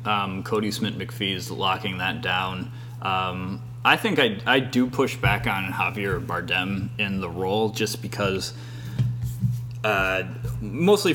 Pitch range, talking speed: 105-125 Hz, 135 wpm